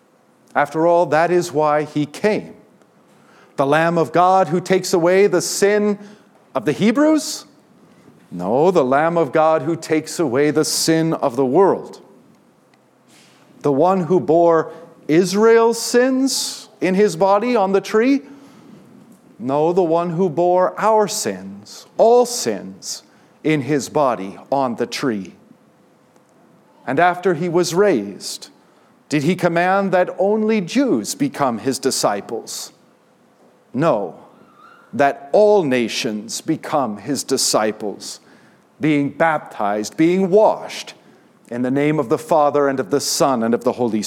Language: English